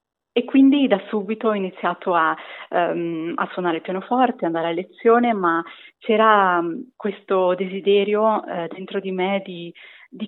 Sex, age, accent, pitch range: female, 30-49, native, 175-220 Hz